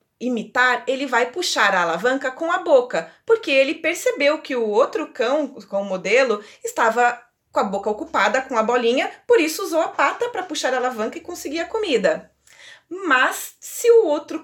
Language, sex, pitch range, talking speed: Portuguese, female, 235-345 Hz, 185 wpm